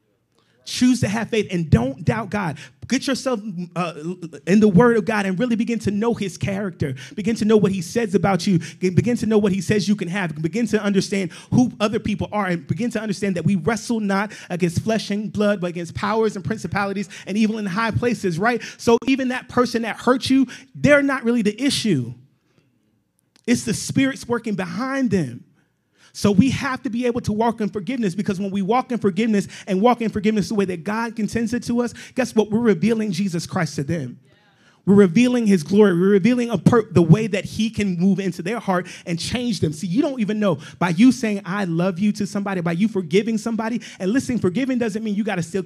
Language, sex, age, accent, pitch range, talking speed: English, male, 30-49, American, 170-220 Hz, 220 wpm